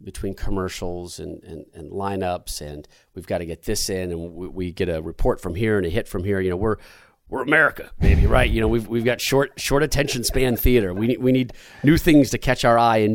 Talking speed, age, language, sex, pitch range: 240 wpm, 40-59, English, male, 110-160 Hz